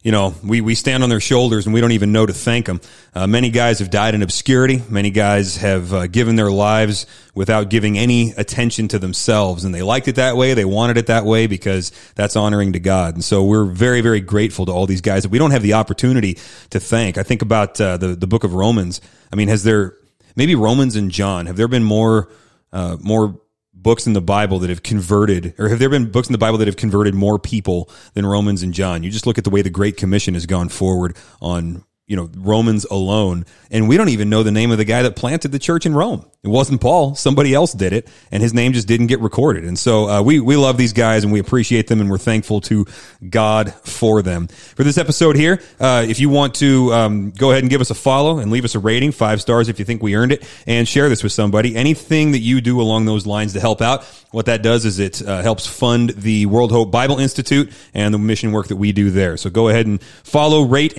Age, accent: 30-49, American